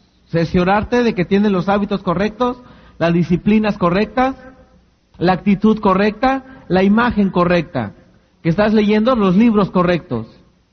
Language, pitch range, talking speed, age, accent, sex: Spanish, 175-235 Hz, 125 wpm, 50-69, Mexican, male